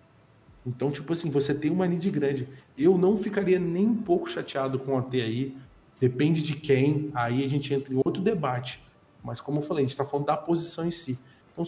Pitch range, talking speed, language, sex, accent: 130-165 Hz, 215 wpm, Portuguese, male, Brazilian